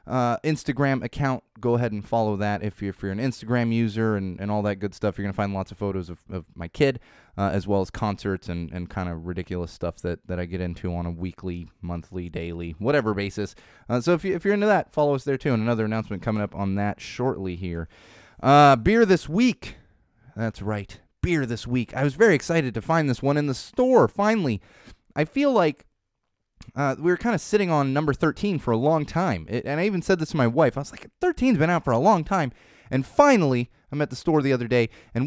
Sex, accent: male, American